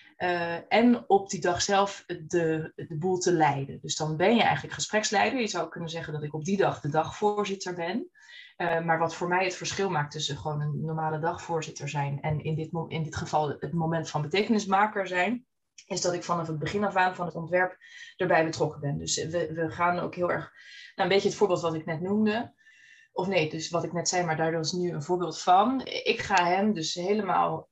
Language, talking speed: Dutch, 225 wpm